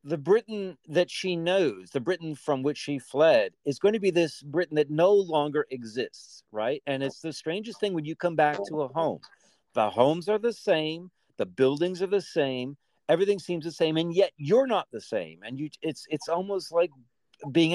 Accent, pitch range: American, 130-190 Hz